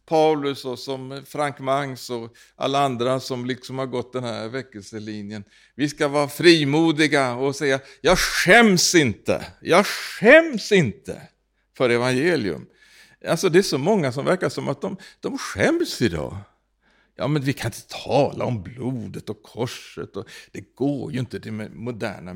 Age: 60-79